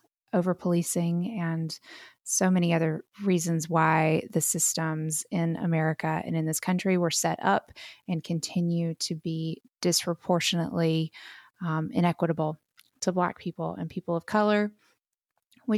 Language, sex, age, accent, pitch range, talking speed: English, female, 20-39, American, 165-200 Hz, 125 wpm